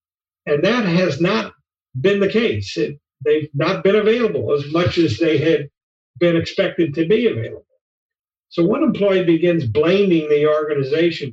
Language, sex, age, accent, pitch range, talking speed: English, male, 50-69, American, 145-195 Hz, 150 wpm